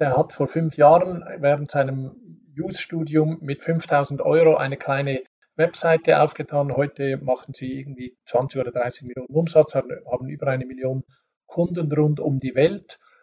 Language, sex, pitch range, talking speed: German, male, 145-190 Hz, 150 wpm